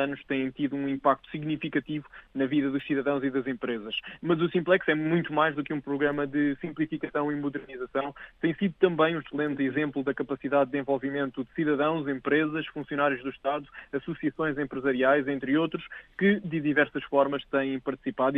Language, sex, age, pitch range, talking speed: Portuguese, male, 20-39, 140-155 Hz, 175 wpm